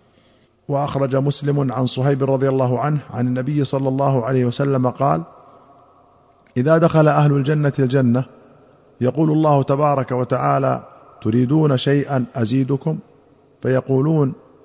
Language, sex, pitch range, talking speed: Arabic, male, 120-140 Hz, 110 wpm